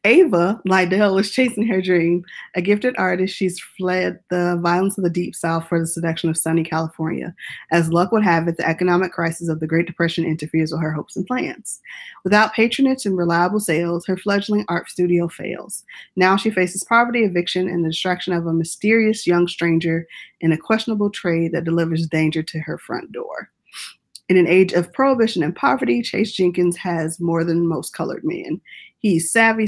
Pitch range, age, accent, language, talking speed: 165-200 Hz, 20-39, American, English, 185 wpm